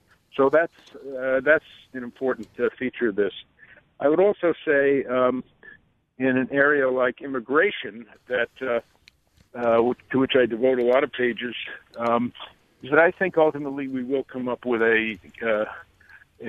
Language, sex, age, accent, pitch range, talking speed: English, male, 50-69, American, 115-135 Hz, 160 wpm